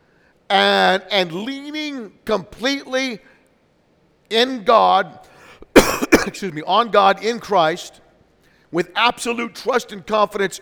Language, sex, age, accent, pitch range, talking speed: English, male, 50-69, American, 185-240 Hz, 95 wpm